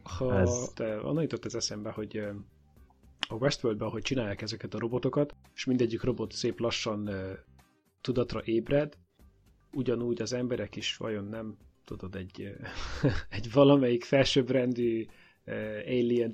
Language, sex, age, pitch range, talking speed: Hungarian, male, 30-49, 105-130 Hz, 120 wpm